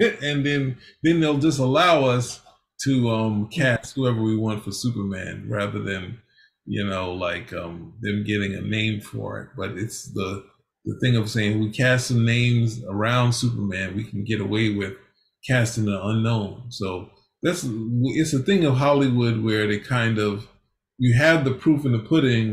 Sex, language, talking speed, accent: male, English, 175 wpm, American